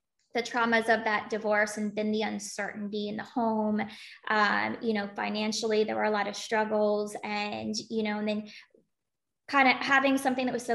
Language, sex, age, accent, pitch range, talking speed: English, female, 20-39, American, 215-255 Hz, 185 wpm